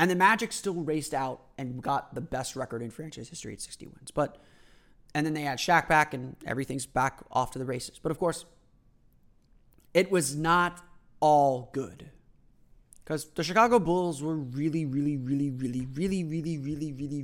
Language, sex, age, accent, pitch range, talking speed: English, male, 30-49, American, 140-175 Hz, 180 wpm